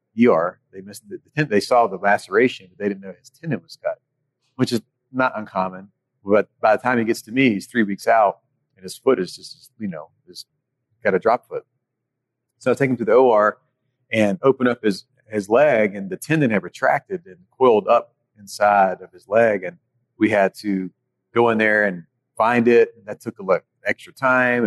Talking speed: 210 wpm